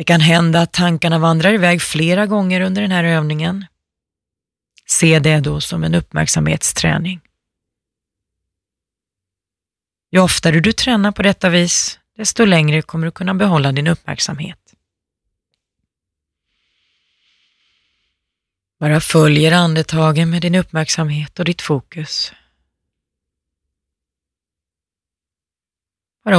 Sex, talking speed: female, 100 wpm